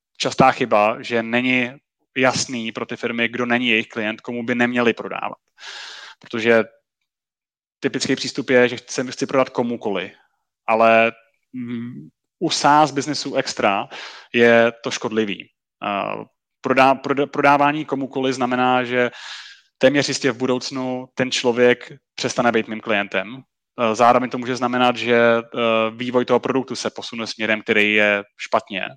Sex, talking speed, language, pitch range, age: male, 125 wpm, Czech, 115-130 Hz, 30-49